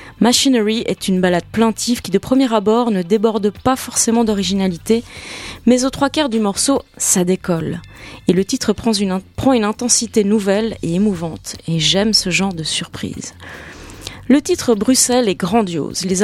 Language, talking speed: English, 165 wpm